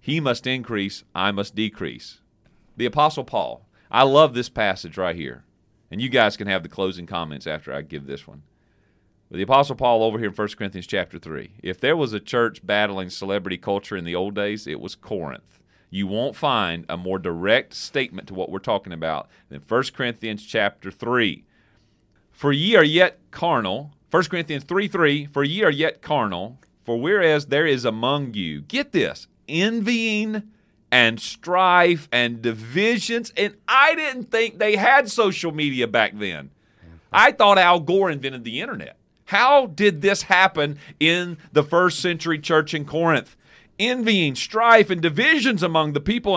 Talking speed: 170 wpm